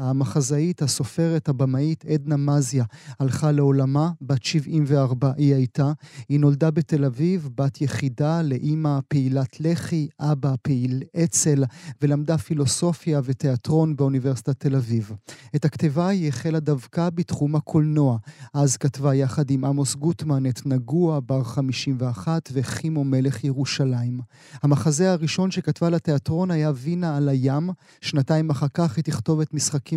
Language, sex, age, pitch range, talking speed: Hebrew, male, 30-49, 135-155 Hz, 130 wpm